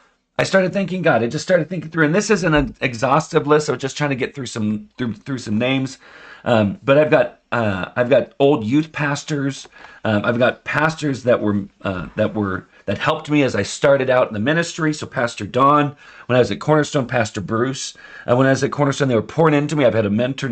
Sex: male